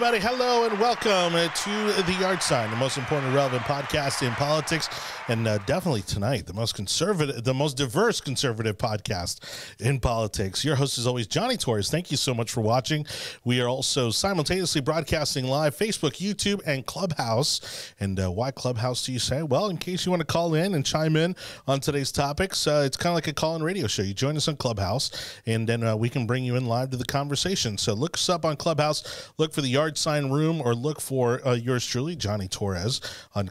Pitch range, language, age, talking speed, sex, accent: 115-155 Hz, English, 30-49, 215 wpm, male, American